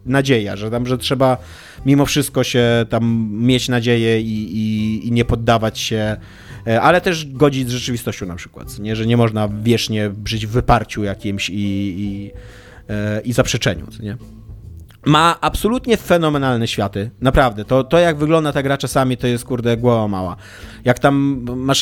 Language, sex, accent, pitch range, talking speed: Polish, male, native, 120-145 Hz, 155 wpm